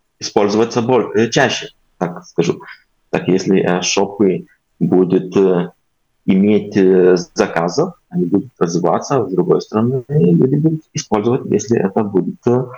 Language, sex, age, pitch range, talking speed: Russian, male, 20-39, 95-125 Hz, 105 wpm